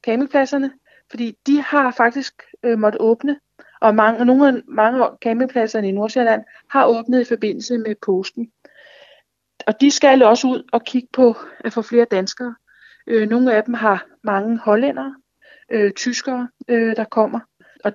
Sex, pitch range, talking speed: female, 210-250 Hz, 155 wpm